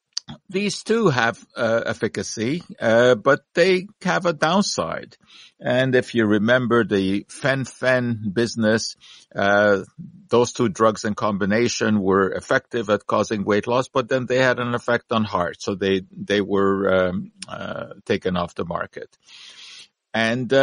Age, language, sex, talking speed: 50-69, English, male, 145 wpm